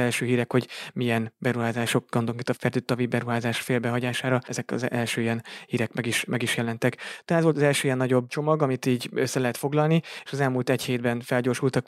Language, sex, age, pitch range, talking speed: Hungarian, male, 20-39, 120-130 Hz, 185 wpm